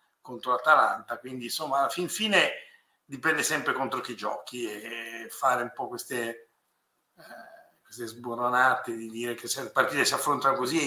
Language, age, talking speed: Italian, 50-69, 165 wpm